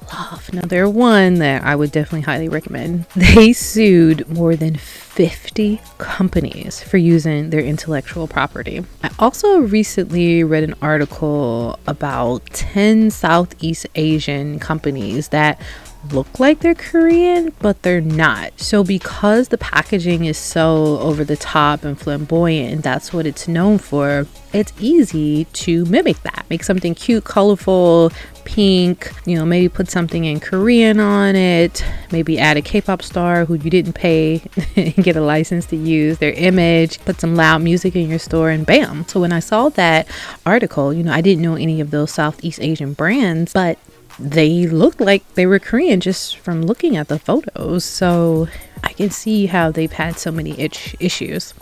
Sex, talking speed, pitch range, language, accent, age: female, 165 wpm, 155-200 Hz, English, American, 20-39